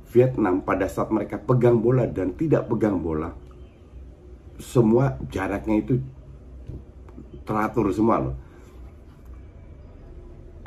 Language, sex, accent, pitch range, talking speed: Indonesian, male, native, 75-125 Hz, 95 wpm